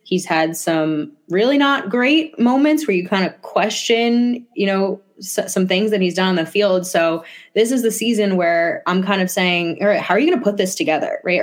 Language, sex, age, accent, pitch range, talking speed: English, female, 20-39, American, 160-205 Hz, 225 wpm